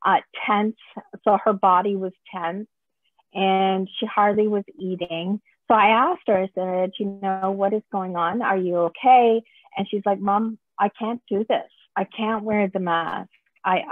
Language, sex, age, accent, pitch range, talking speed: English, female, 40-59, American, 185-220 Hz, 175 wpm